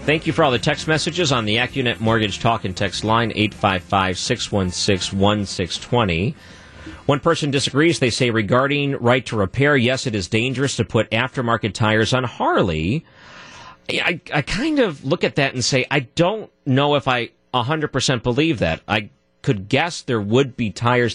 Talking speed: 165 wpm